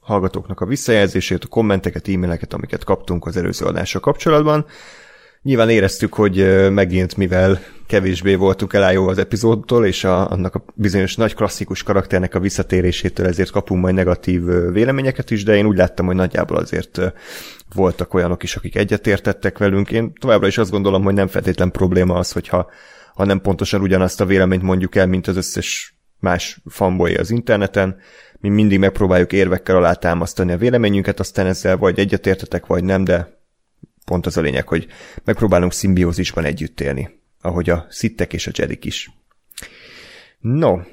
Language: Hungarian